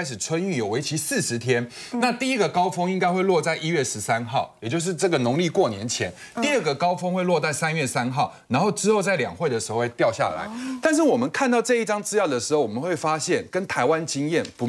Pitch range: 150-230 Hz